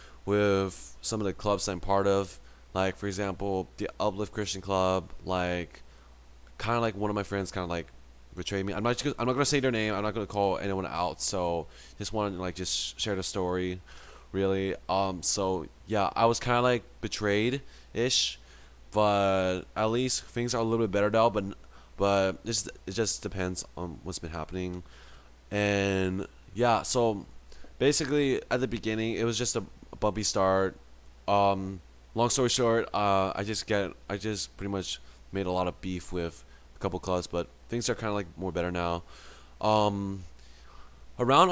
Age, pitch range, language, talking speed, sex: 20-39, 90-110 Hz, English, 185 wpm, male